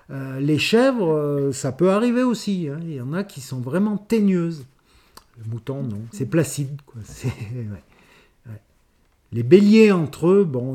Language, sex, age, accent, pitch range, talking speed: French, male, 50-69, French, 135-180 Hz, 175 wpm